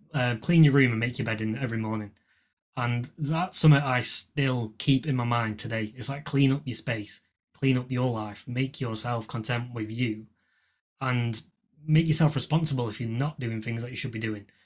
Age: 20-39